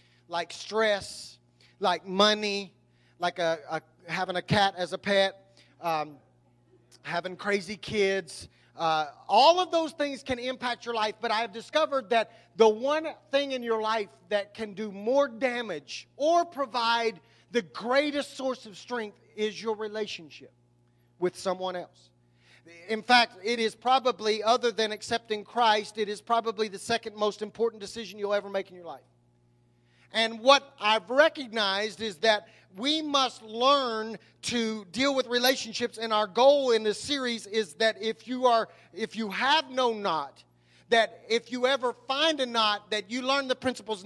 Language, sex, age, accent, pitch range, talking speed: English, male, 40-59, American, 195-245 Hz, 160 wpm